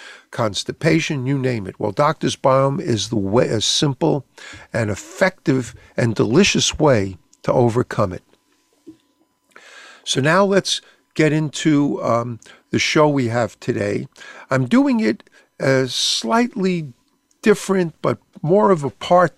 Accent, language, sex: American, English, male